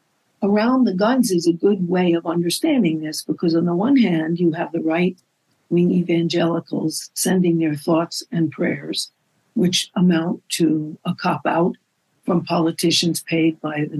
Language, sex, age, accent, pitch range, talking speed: English, female, 60-79, American, 165-200 Hz, 160 wpm